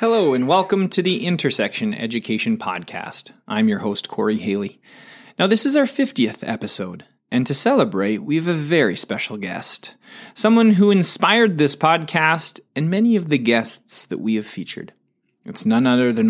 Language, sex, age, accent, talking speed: English, male, 30-49, American, 170 wpm